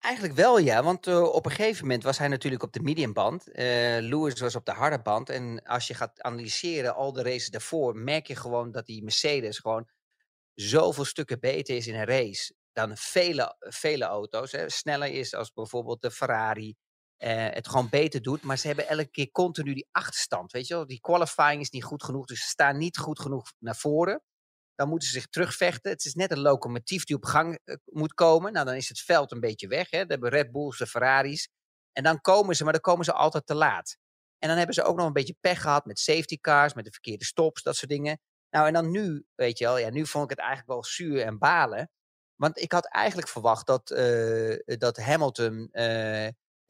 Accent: Dutch